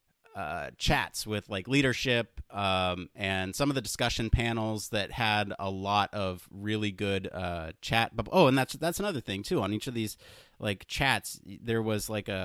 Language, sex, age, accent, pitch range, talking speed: English, male, 30-49, American, 100-130 Hz, 185 wpm